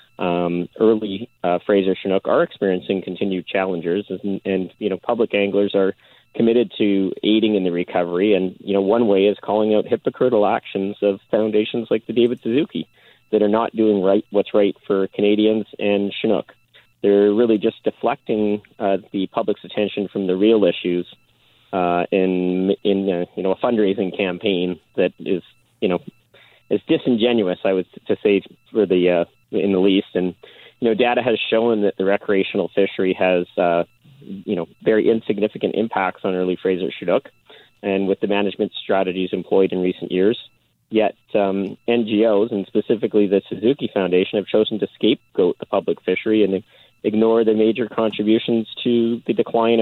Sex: male